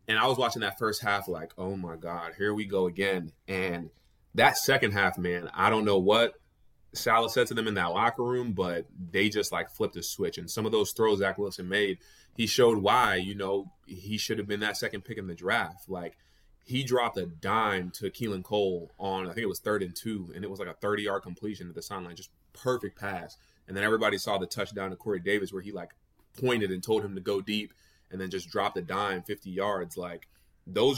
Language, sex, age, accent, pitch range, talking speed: English, male, 20-39, American, 90-110 Hz, 230 wpm